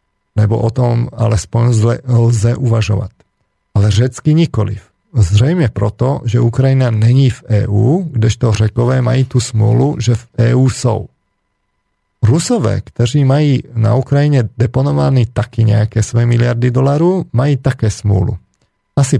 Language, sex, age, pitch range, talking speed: Slovak, male, 40-59, 110-130 Hz, 130 wpm